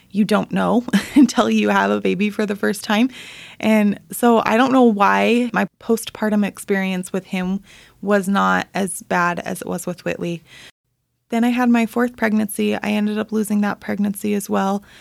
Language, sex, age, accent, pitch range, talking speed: English, female, 20-39, American, 190-215 Hz, 185 wpm